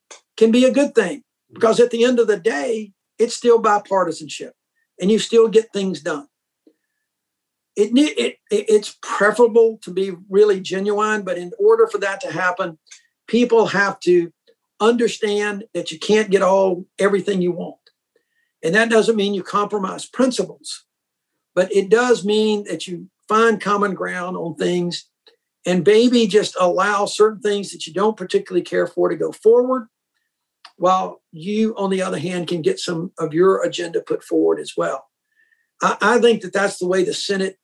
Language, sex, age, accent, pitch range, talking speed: English, male, 50-69, American, 185-225 Hz, 170 wpm